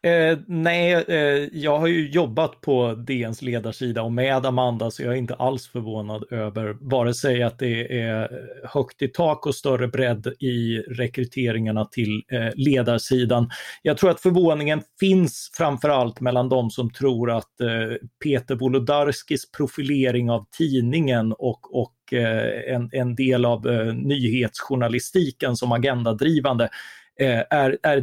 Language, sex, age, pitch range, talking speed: Swedish, male, 30-49, 120-145 Hz, 140 wpm